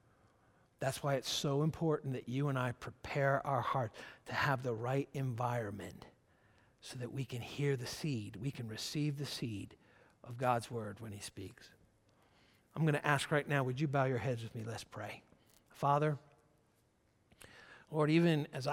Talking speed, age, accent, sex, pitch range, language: 175 wpm, 60-79, American, male, 115-150 Hz, English